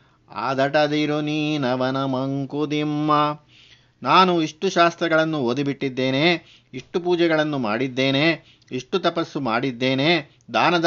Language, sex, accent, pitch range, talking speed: Kannada, male, native, 130-155 Hz, 85 wpm